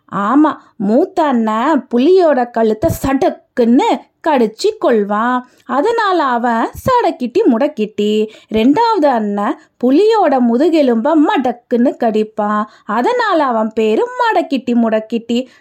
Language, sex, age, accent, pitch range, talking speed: Tamil, female, 20-39, native, 235-345 Hz, 90 wpm